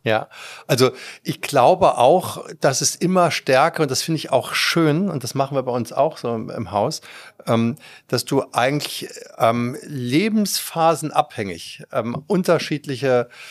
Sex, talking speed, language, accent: male, 140 wpm, German, German